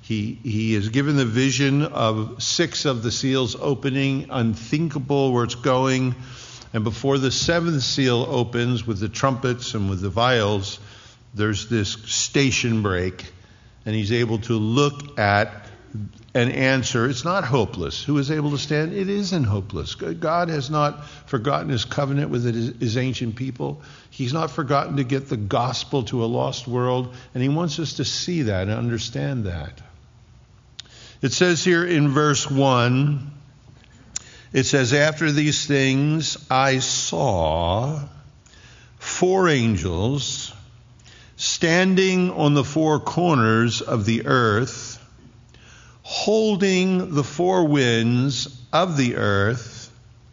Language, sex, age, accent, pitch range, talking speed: English, male, 50-69, American, 115-145 Hz, 135 wpm